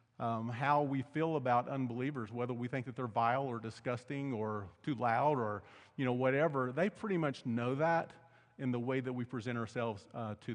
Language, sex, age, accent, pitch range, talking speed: English, male, 40-59, American, 115-140 Hz, 200 wpm